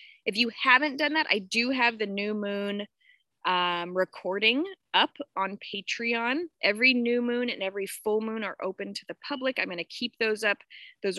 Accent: American